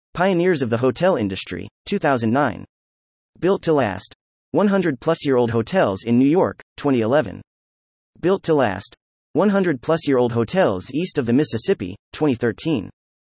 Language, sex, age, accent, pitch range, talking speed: English, male, 30-49, American, 105-160 Hz, 115 wpm